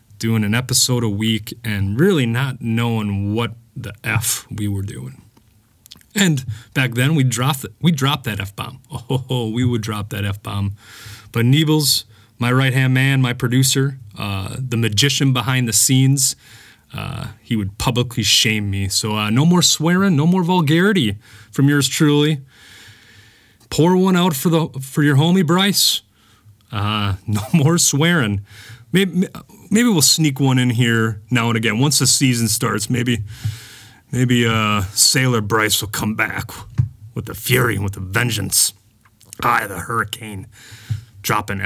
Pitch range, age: 105-135 Hz, 30-49